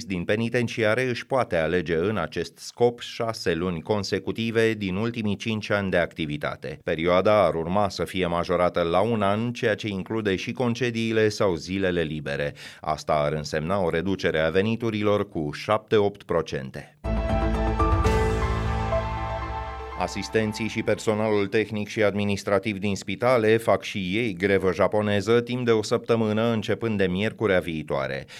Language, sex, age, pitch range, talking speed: Romanian, male, 30-49, 90-110 Hz, 135 wpm